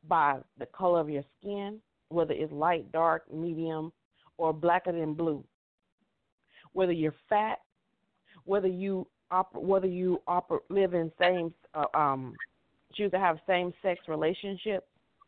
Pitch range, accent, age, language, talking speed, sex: 170-225 Hz, American, 40-59, English, 125 wpm, female